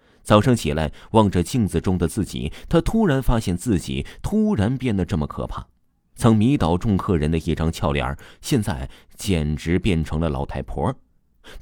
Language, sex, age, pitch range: Chinese, male, 30-49, 75-110 Hz